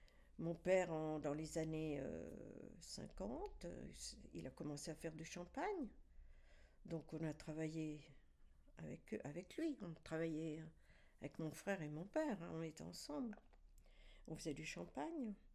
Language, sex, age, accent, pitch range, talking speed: French, female, 60-79, French, 150-200 Hz, 145 wpm